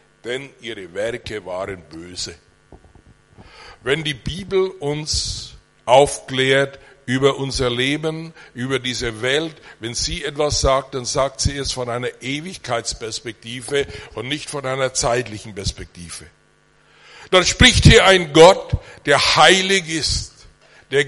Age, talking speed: 60-79, 120 wpm